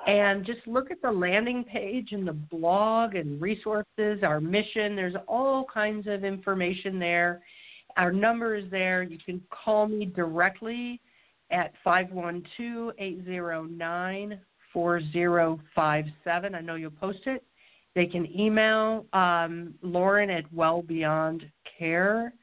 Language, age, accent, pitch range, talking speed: English, 50-69, American, 170-210 Hz, 115 wpm